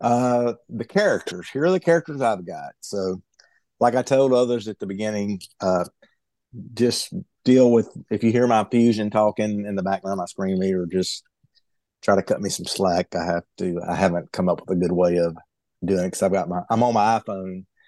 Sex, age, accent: male, 50-69, American